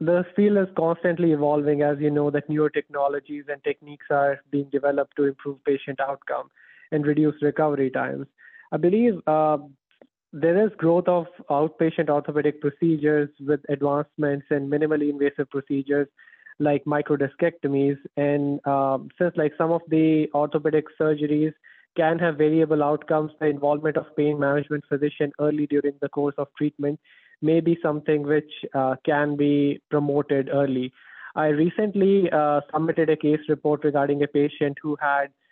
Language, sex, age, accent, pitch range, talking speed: English, male, 20-39, Indian, 145-155 Hz, 150 wpm